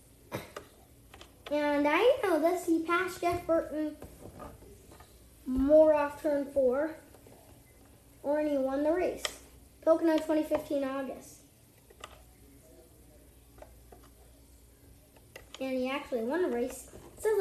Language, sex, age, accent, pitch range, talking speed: English, female, 10-29, American, 255-310 Hz, 95 wpm